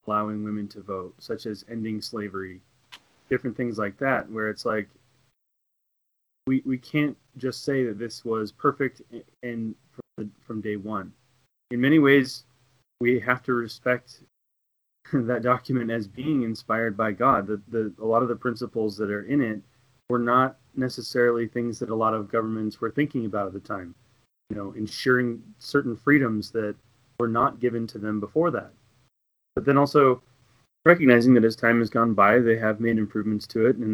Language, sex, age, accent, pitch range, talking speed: English, male, 30-49, American, 105-125 Hz, 175 wpm